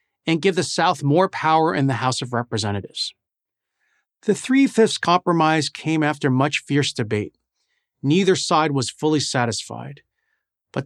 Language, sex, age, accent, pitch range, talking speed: English, male, 40-59, American, 120-180 Hz, 140 wpm